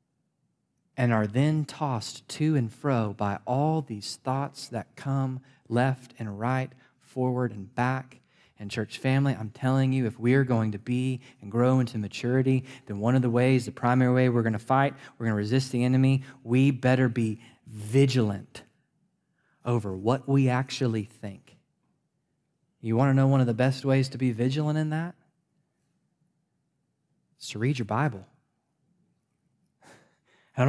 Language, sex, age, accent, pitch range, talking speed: English, male, 20-39, American, 120-155 Hz, 160 wpm